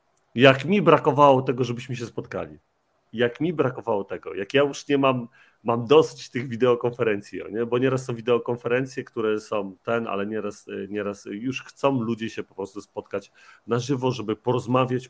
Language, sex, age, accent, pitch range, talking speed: Polish, male, 40-59, native, 115-150 Hz, 165 wpm